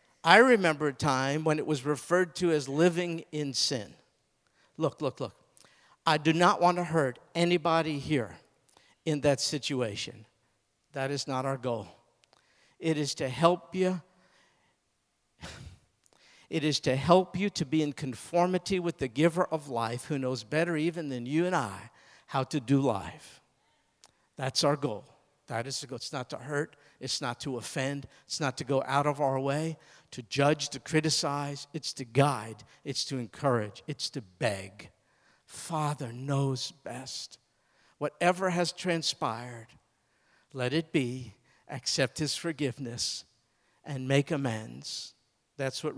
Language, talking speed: English, 150 wpm